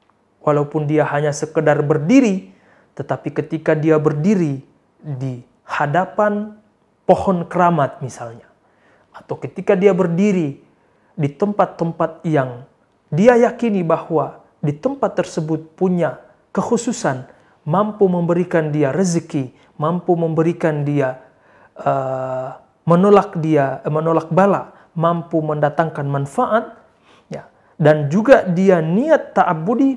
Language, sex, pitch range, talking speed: Indonesian, male, 140-190 Hz, 95 wpm